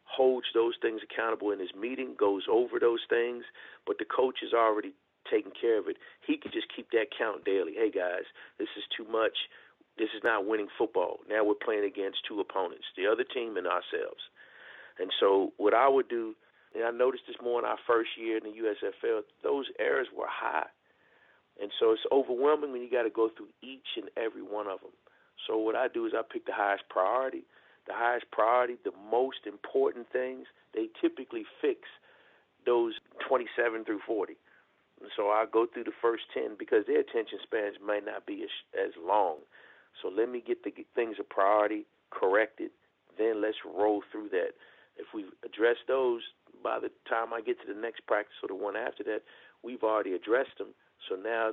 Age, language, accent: 40-59, English, American